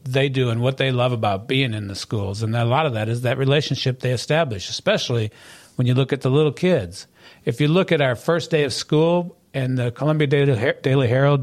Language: English